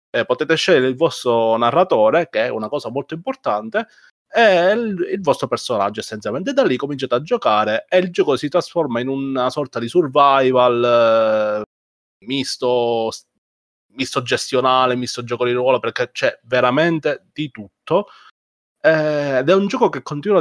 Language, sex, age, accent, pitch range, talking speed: Italian, male, 30-49, native, 115-155 Hz, 155 wpm